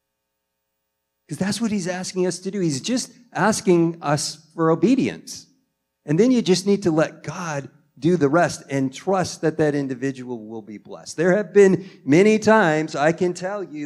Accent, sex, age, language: American, male, 50-69, English